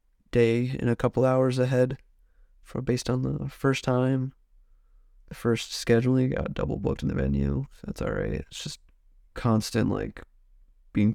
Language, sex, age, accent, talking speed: English, male, 20-39, American, 155 wpm